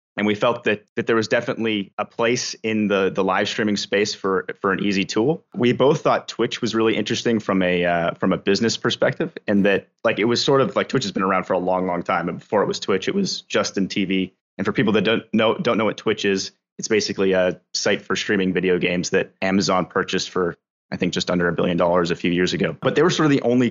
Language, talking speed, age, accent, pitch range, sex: English, 260 wpm, 30-49, American, 95-115 Hz, male